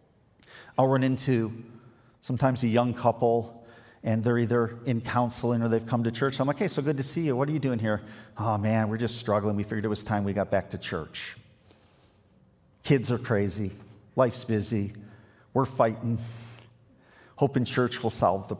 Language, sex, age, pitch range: English, male, 50-69, 105-130 Hz